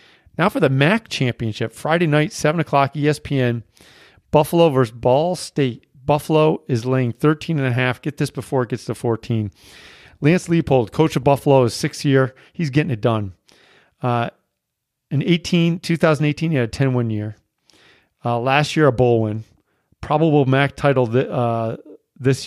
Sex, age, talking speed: male, 40-59, 160 wpm